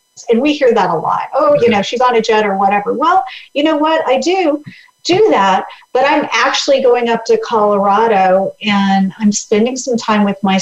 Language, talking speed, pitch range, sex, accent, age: English, 210 wpm, 210-270 Hz, female, American, 40-59